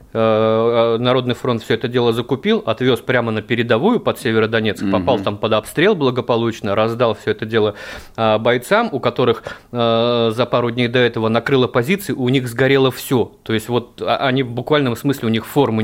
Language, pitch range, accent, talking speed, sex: Russian, 110-125 Hz, native, 175 wpm, male